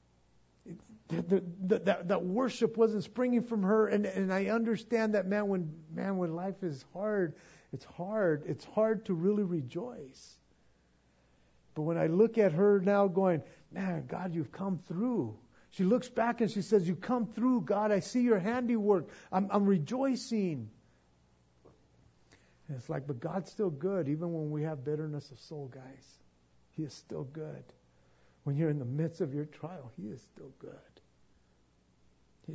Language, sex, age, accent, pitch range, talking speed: English, male, 50-69, American, 125-185 Hz, 160 wpm